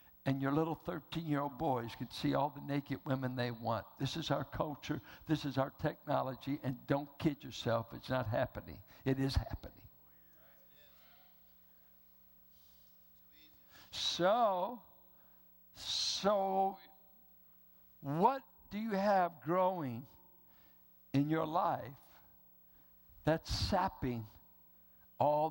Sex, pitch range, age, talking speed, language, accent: male, 125-175 Hz, 60-79, 105 wpm, English, American